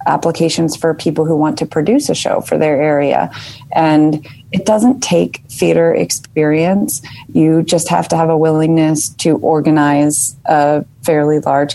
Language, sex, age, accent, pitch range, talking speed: English, female, 30-49, American, 145-160 Hz, 155 wpm